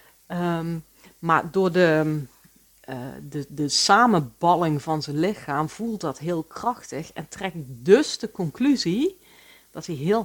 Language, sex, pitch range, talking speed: Dutch, female, 155-205 Hz, 115 wpm